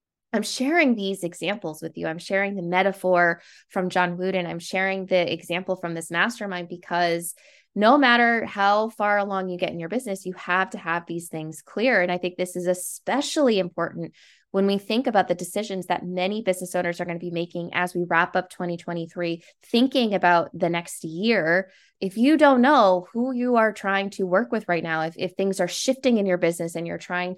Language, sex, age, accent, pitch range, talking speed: English, female, 20-39, American, 175-210 Hz, 205 wpm